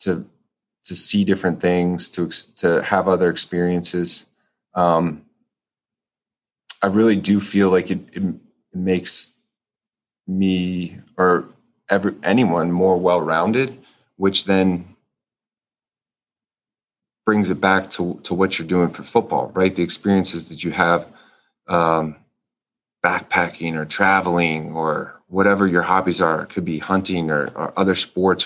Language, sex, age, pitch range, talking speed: English, male, 30-49, 85-95 Hz, 125 wpm